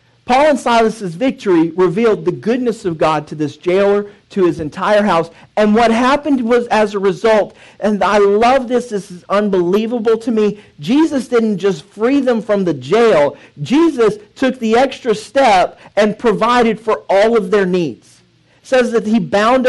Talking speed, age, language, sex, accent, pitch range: 175 wpm, 40-59, English, male, American, 200-245 Hz